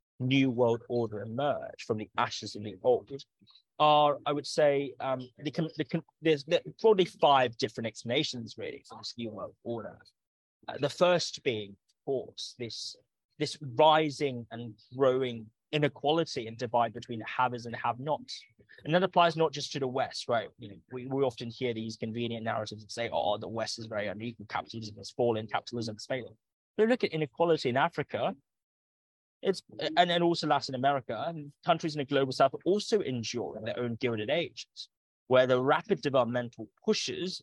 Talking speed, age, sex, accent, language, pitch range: 180 wpm, 20-39, male, British, English, 115-150 Hz